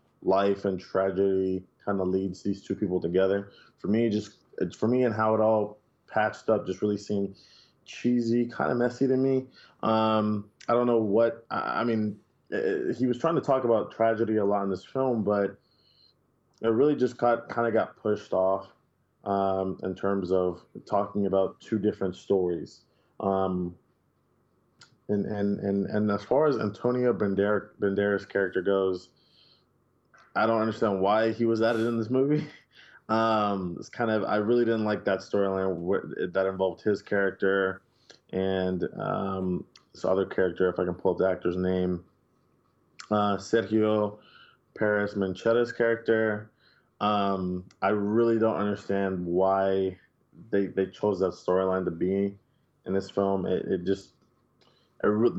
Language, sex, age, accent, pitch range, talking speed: English, male, 20-39, American, 95-115 Hz, 155 wpm